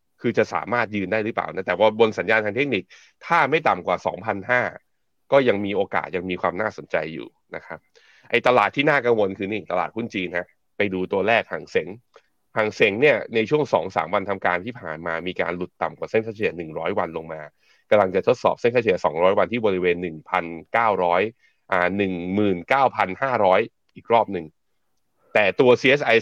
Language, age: Thai, 20-39